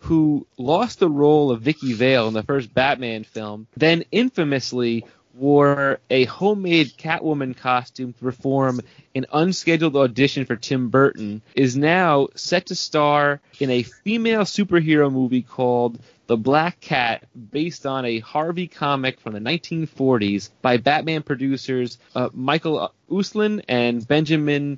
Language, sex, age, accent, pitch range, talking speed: English, male, 30-49, American, 125-155 Hz, 140 wpm